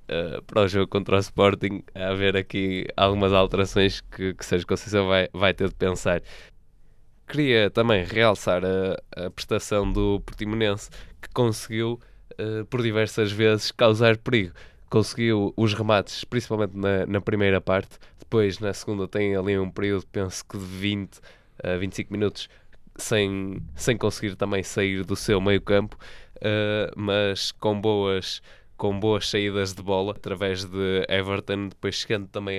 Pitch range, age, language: 95-105 Hz, 20-39, Portuguese